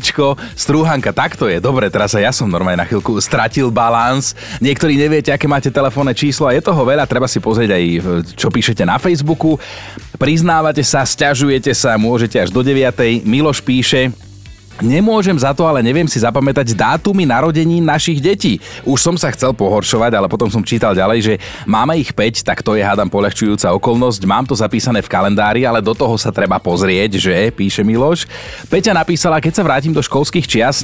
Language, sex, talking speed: Slovak, male, 185 wpm